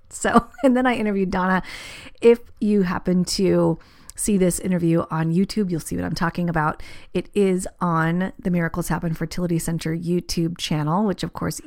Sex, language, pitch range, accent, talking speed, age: female, English, 170-205 Hz, American, 175 wpm, 30-49